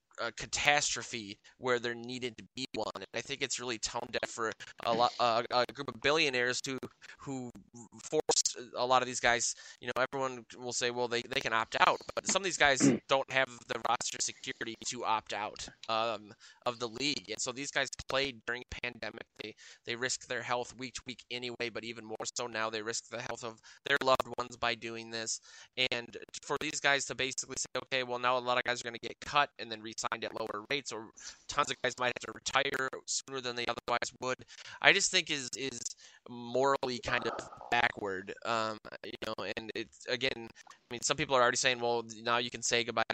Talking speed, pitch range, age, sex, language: 220 wpm, 115-130 Hz, 20-39, male, English